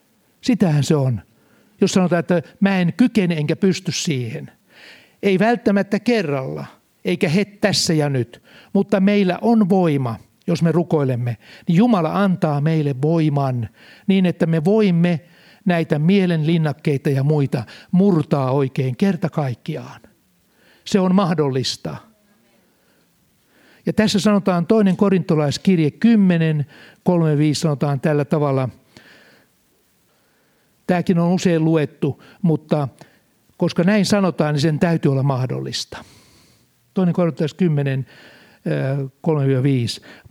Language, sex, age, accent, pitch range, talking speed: Finnish, male, 60-79, native, 145-190 Hz, 110 wpm